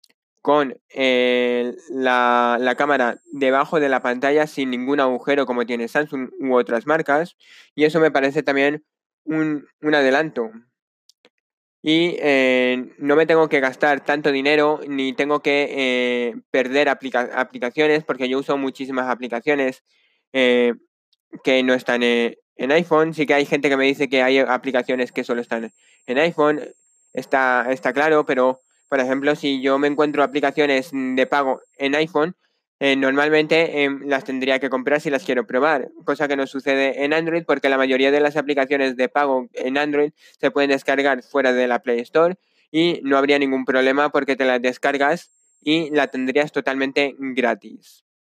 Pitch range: 130-150 Hz